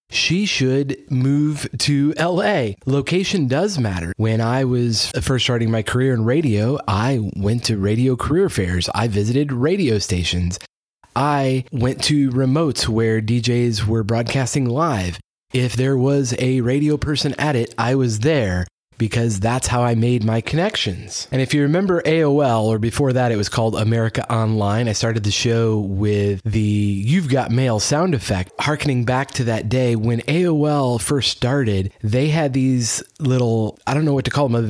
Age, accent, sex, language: 30-49, American, male, English